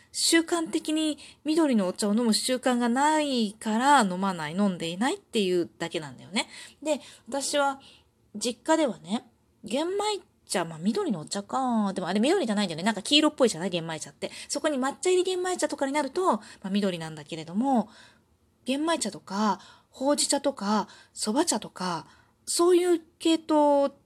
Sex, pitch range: female, 195-285 Hz